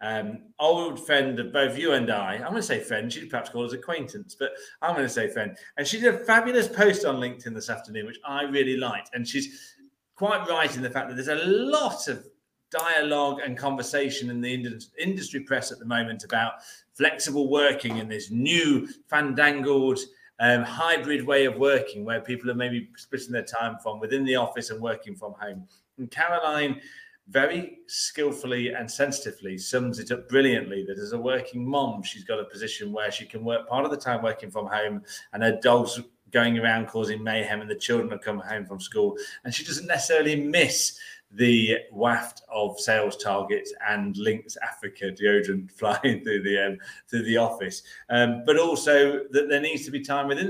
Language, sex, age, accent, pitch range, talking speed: English, male, 30-49, British, 115-145 Hz, 190 wpm